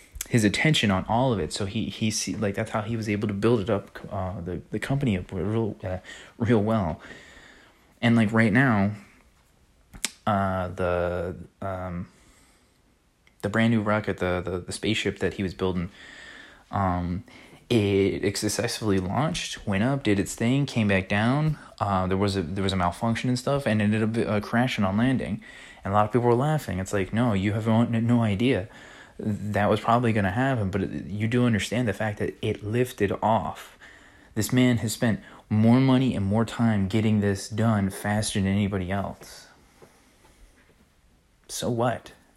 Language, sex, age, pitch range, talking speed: English, male, 20-39, 95-115 Hz, 180 wpm